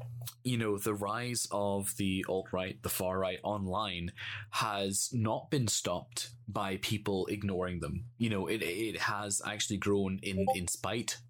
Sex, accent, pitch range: male, British, 100-120 Hz